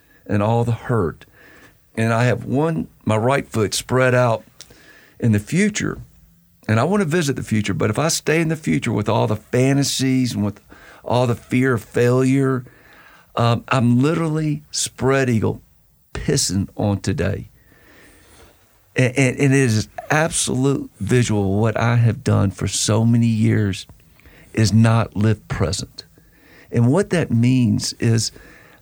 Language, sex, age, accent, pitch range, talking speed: English, male, 50-69, American, 105-130 Hz, 150 wpm